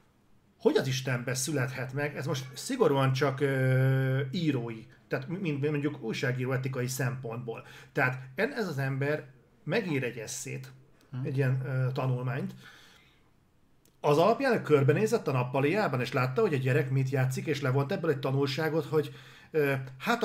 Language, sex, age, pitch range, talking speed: Hungarian, male, 40-59, 125-150 Hz, 140 wpm